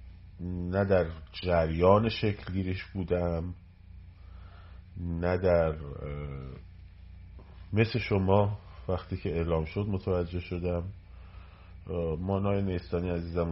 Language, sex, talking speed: Persian, male, 80 wpm